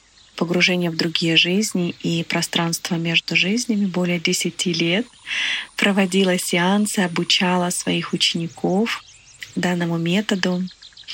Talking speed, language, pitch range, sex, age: 95 wpm, Russian, 175-195 Hz, female, 30-49